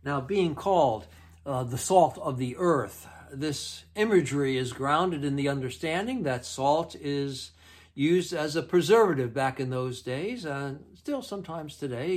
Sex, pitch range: male, 120-170 Hz